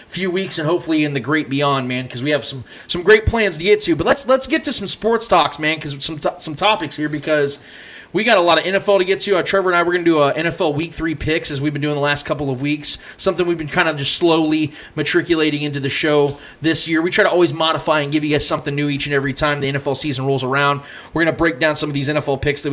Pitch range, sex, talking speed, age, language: 140-170 Hz, male, 280 wpm, 20-39, English